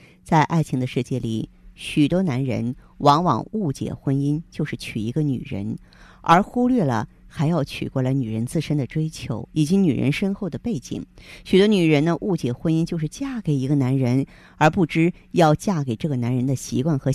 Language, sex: Chinese, female